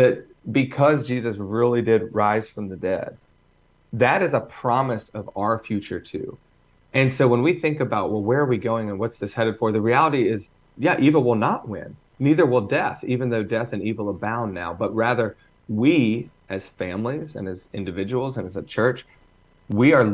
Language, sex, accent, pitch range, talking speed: English, male, American, 100-125 Hz, 195 wpm